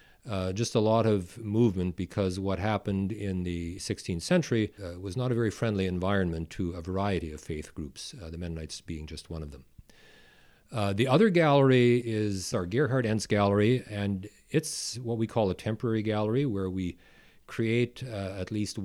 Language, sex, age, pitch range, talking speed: English, male, 40-59, 90-115 Hz, 180 wpm